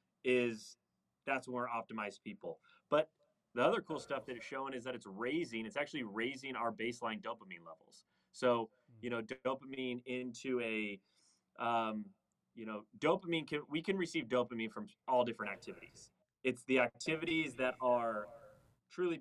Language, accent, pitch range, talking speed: English, American, 115-140 Hz, 155 wpm